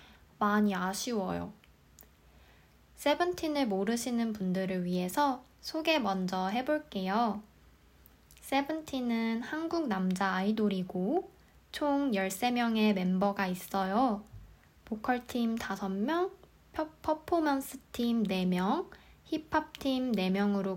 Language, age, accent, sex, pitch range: Korean, 20-39, native, female, 190-265 Hz